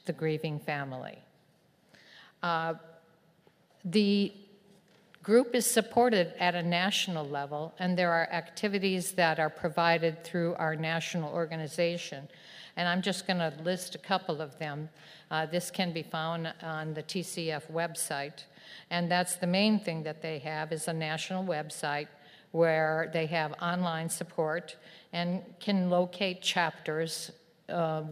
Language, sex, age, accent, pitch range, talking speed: English, female, 50-69, American, 160-180 Hz, 135 wpm